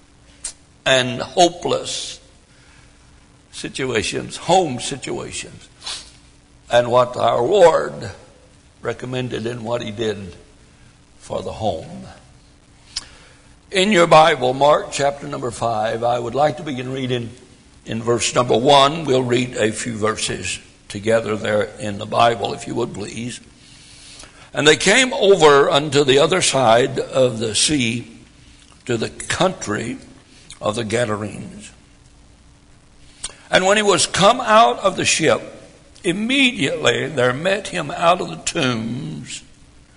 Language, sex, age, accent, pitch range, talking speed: English, male, 60-79, American, 115-155 Hz, 125 wpm